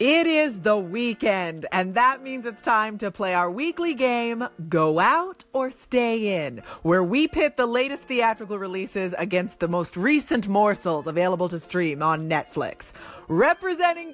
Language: English